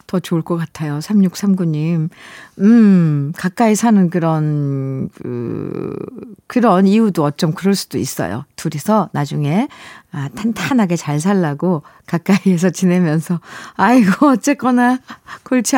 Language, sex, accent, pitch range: Korean, female, native, 180-255 Hz